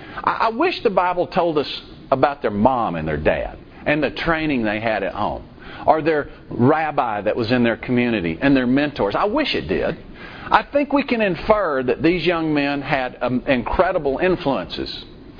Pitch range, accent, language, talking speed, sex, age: 135-185 Hz, American, English, 185 wpm, male, 50-69